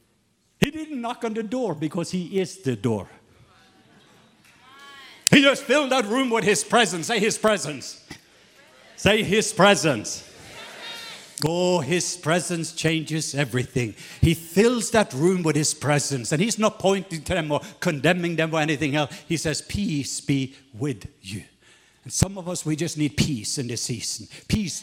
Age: 60-79